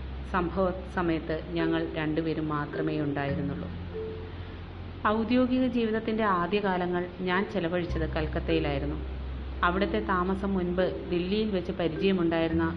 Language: Malayalam